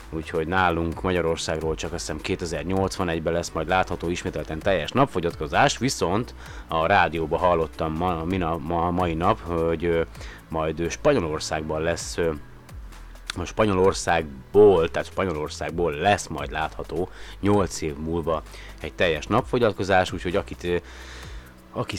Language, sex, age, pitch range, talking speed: Hungarian, male, 30-49, 80-95 Hz, 110 wpm